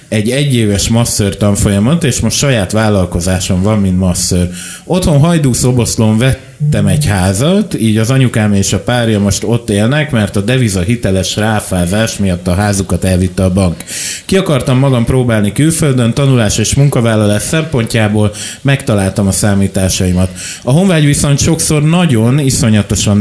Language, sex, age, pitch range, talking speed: Hungarian, male, 30-49, 100-130 Hz, 145 wpm